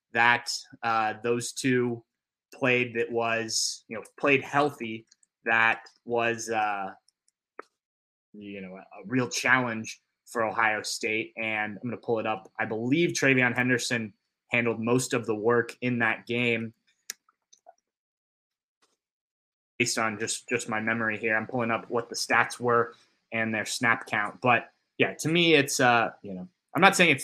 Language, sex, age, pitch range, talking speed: English, male, 20-39, 110-130 Hz, 155 wpm